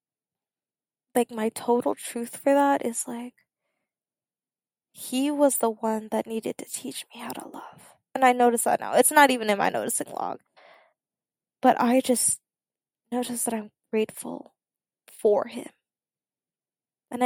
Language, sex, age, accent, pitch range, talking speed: English, female, 10-29, American, 220-265 Hz, 145 wpm